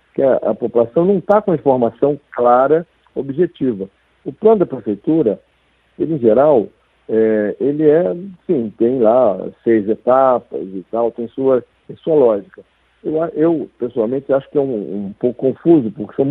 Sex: male